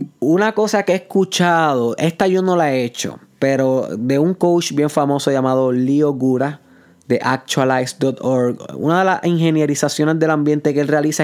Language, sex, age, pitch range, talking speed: Spanish, male, 20-39, 135-175 Hz, 165 wpm